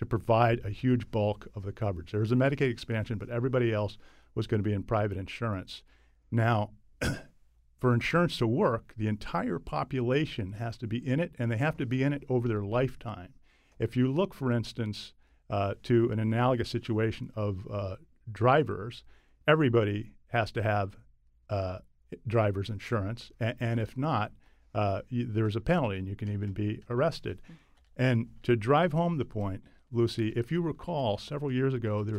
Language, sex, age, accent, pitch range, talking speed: English, male, 50-69, American, 105-130 Hz, 175 wpm